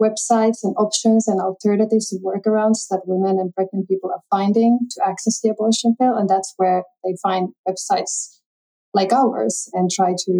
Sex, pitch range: female, 185-215 Hz